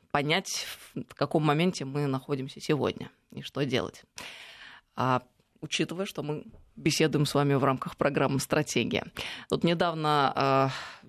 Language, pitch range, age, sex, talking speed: Russian, 140-175 Hz, 20-39, female, 130 wpm